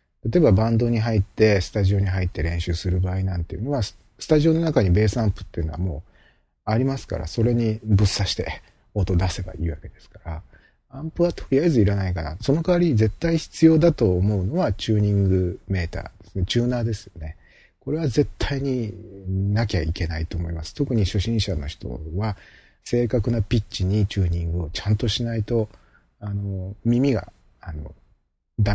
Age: 40-59